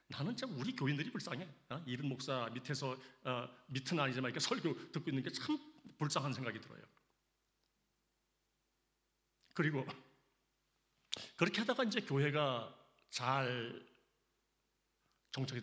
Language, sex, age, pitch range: Korean, male, 40-59, 130-200 Hz